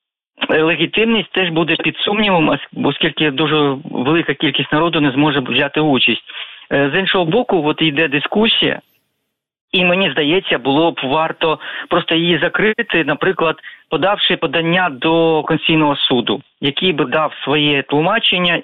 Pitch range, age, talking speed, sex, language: 150-180 Hz, 40-59, 130 wpm, male, Ukrainian